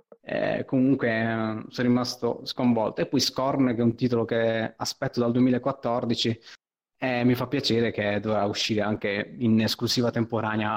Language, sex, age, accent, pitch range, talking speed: Italian, male, 20-39, native, 115-135 Hz, 155 wpm